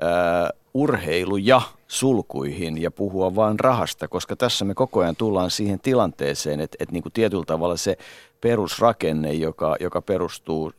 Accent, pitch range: native, 85-110 Hz